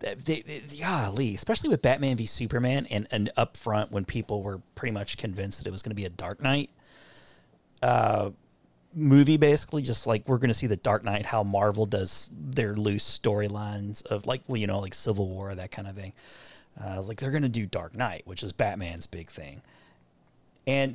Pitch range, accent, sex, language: 100-125 Hz, American, male, English